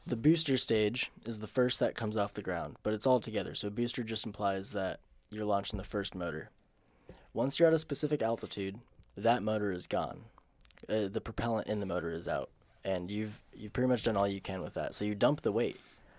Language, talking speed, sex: English, 220 wpm, male